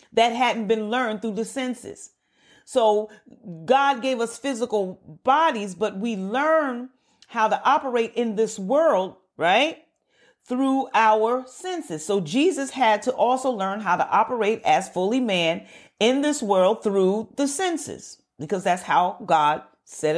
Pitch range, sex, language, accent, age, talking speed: 215-275 Hz, female, English, American, 40-59, 145 wpm